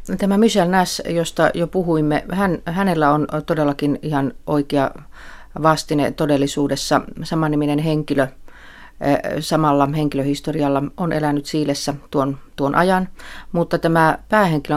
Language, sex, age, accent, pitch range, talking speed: Finnish, female, 40-59, native, 145-165 Hz, 110 wpm